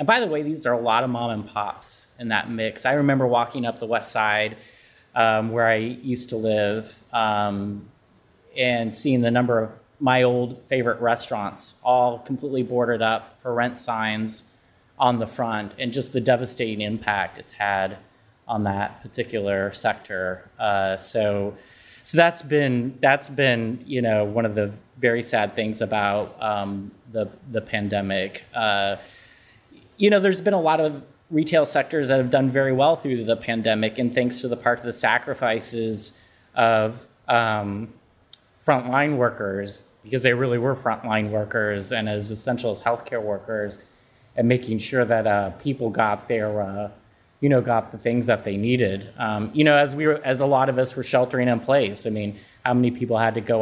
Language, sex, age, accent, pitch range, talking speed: English, male, 30-49, American, 105-125 Hz, 180 wpm